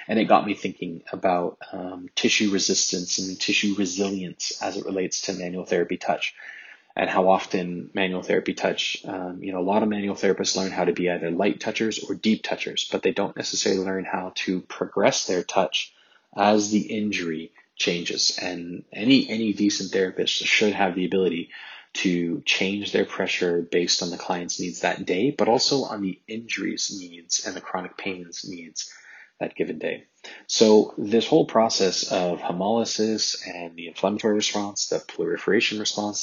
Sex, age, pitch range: male, 20-39, 90-105 Hz